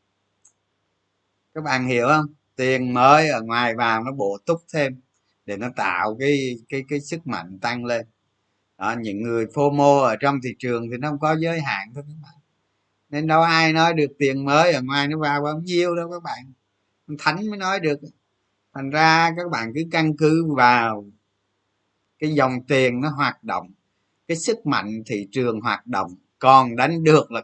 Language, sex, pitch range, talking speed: Vietnamese, male, 115-160 Hz, 190 wpm